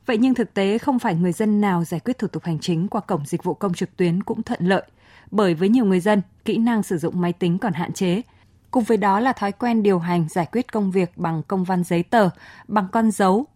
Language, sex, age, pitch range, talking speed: Vietnamese, female, 20-39, 180-225 Hz, 260 wpm